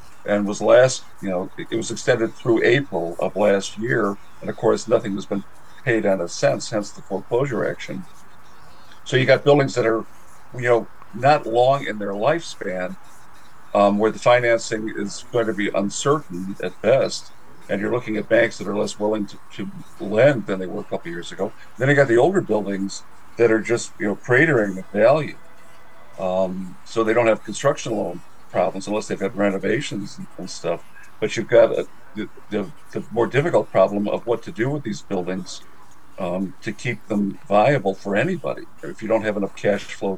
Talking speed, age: 195 wpm, 50-69